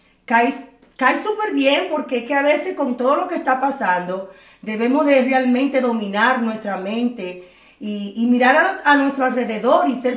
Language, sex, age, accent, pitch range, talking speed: Spanish, female, 30-49, American, 200-255 Hz, 175 wpm